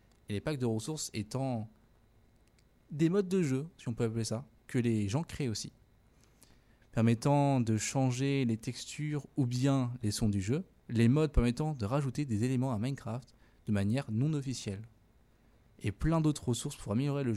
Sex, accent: male, French